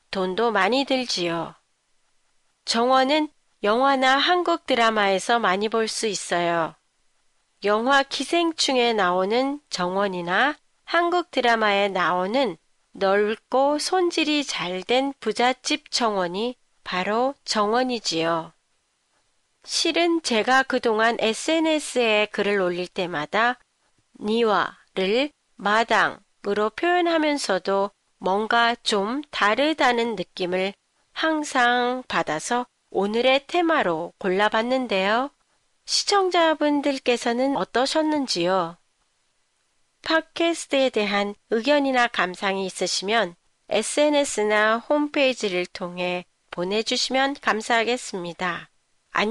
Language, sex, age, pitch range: Japanese, female, 40-59, 195-275 Hz